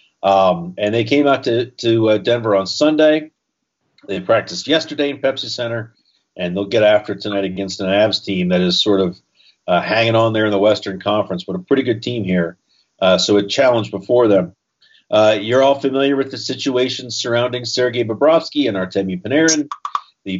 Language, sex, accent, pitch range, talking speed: English, male, American, 100-125 Hz, 190 wpm